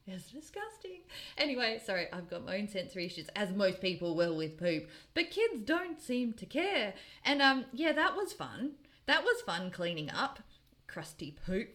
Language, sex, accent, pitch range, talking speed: English, female, Australian, 170-250 Hz, 180 wpm